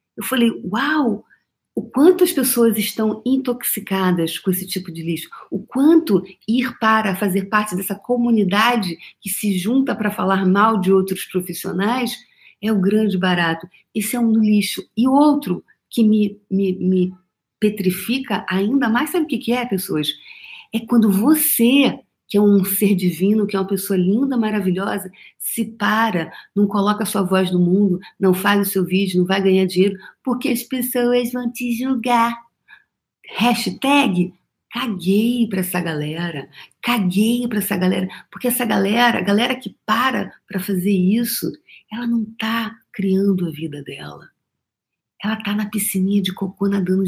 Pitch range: 190-235 Hz